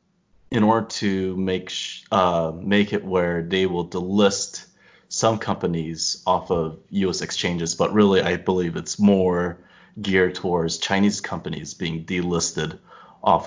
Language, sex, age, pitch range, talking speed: English, male, 30-49, 85-100 Hz, 140 wpm